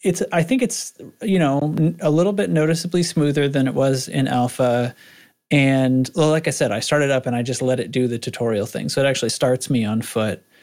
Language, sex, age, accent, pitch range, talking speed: English, male, 30-49, American, 120-150 Hz, 225 wpm